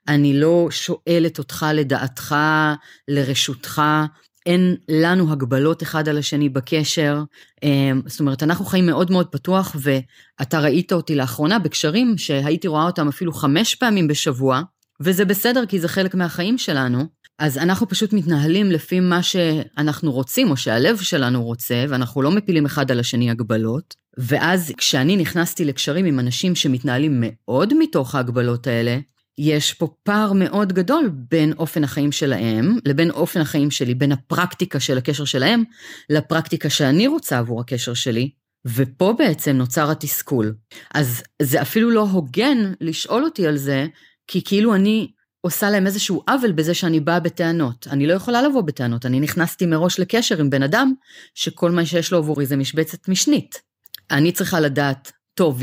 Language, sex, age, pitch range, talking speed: Hebrew, female, 30-49, 140-180 Hz, 150 wpm